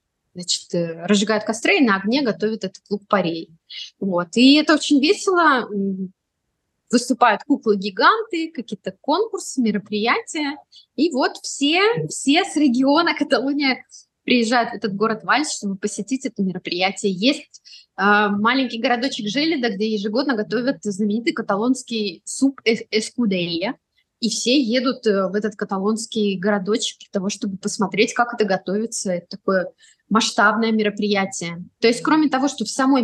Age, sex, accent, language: 20-39, female, native, Russian